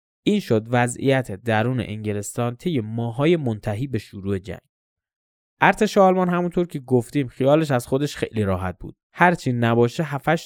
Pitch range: 110-150 Hz